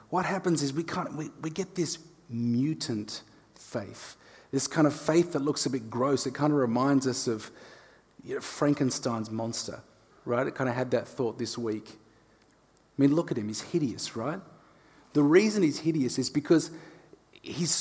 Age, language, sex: 30-49, English, male